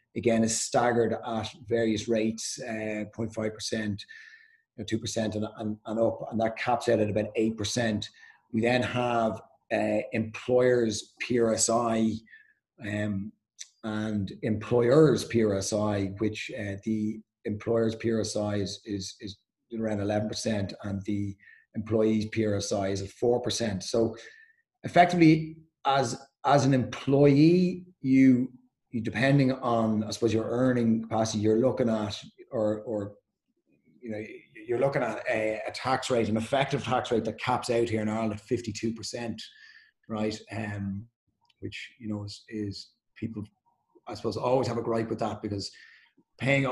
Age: 30-49